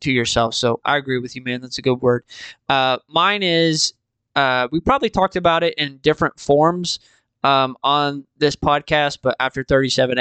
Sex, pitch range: male, 130-165 Hz